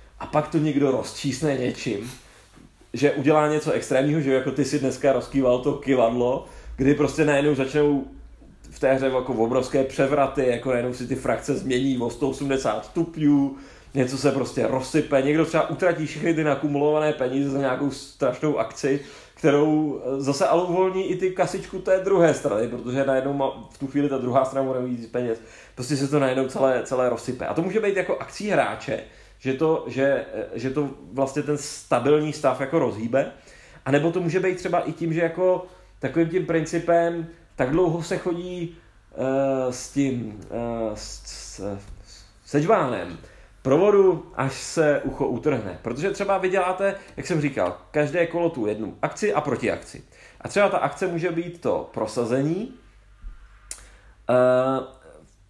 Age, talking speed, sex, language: 30-49, 165 wpm, male, Czech